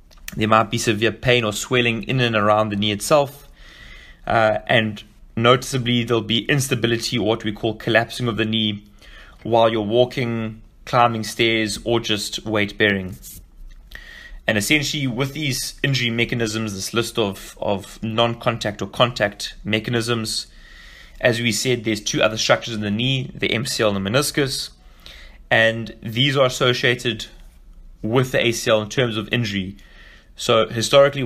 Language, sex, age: English, male, 20-39